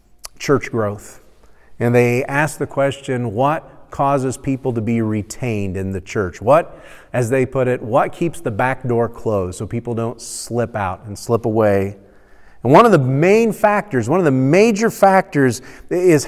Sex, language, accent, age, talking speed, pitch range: male, English, American, 40-59, 175 wpm, 115-150 Hz